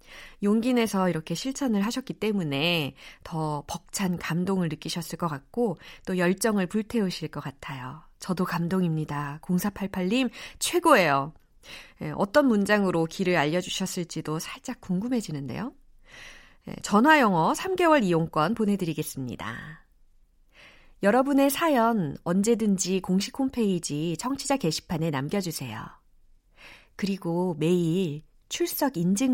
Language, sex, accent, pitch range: Korean, female, native, 165-255 Hz